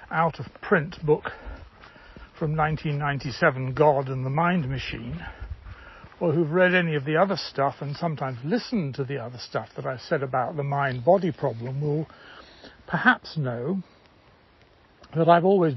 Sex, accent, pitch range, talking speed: male, British, 135-180 Hz, 140 wpm